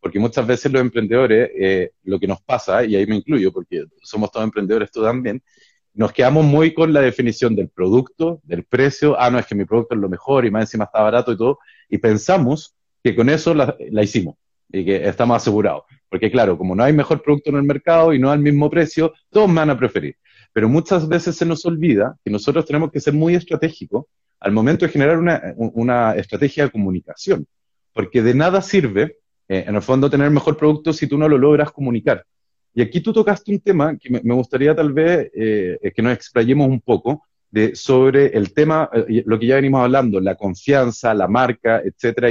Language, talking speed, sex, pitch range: Spanish, 210 wpm, male, 110-160 Hz